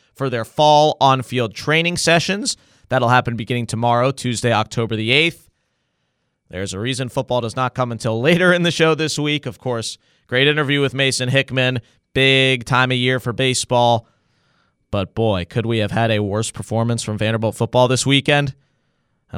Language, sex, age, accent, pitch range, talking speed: English, male, 30-49, American, 115-145 Hz, 175 wpm